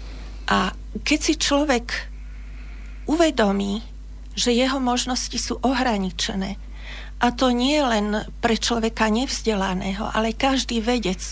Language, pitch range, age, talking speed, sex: Slovak, 205-240 Hz, 40-59, 105 wpm, female